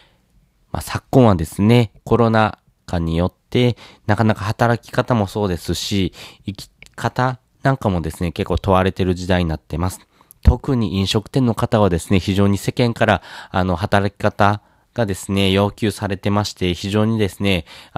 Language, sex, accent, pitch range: Japanese, male, native, 90-120 Hz